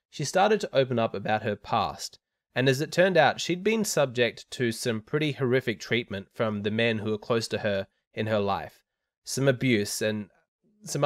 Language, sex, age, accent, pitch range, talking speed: English, male, 20-39, Australian, 110-140 Hz, 195 wpm